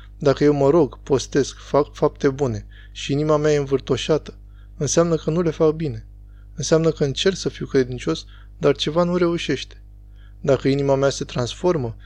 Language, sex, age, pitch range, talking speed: Romanian, male, 20-39, 100-155 Hz, 170 wpm